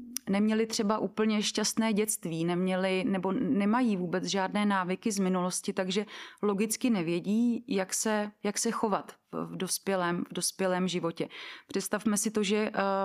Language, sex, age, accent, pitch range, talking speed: Czech, female, 30-49, native, 190-220 Hz, 140 wpm